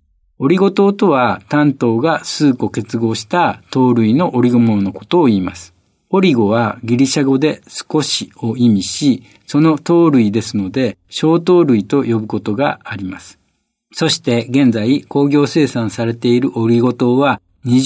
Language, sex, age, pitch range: Japanese, male, 50-69, 110-160 Hz